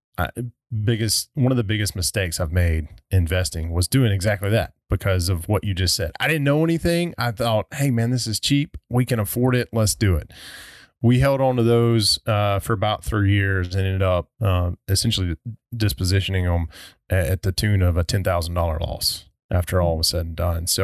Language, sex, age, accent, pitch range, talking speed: English, male, 20-39, American, 95-115 Hz, 205 wpm